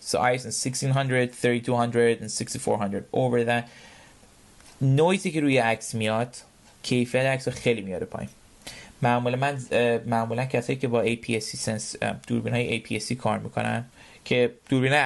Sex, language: male, Persian